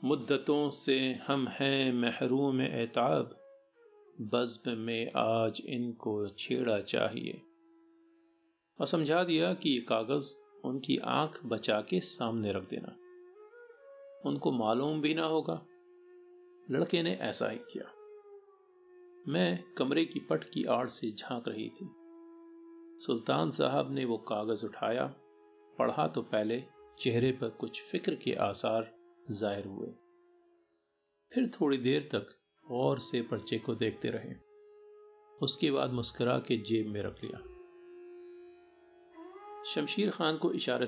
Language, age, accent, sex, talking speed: Hindi, 50-69, native, male, 120 wpm